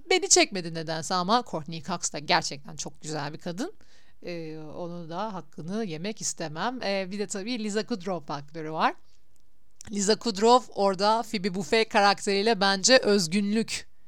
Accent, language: native, Turkish